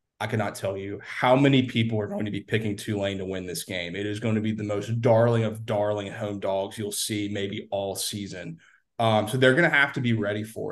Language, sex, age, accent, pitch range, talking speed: English, male, 30-49, American, 105-115 Hz, 245 wpm